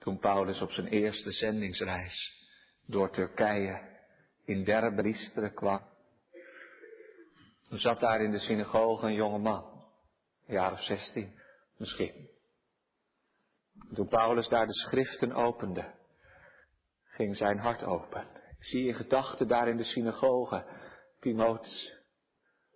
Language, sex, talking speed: Dutch, male, 115 wpm